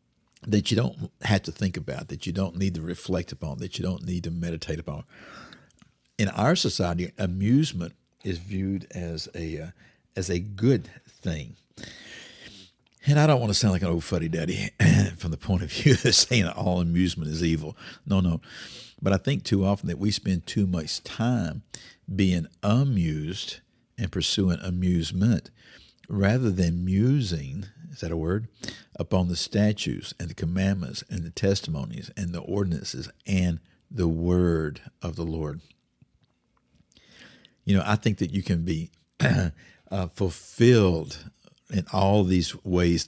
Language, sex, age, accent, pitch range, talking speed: English, male, 50-69, American, 85-100 Hz, 155 wpm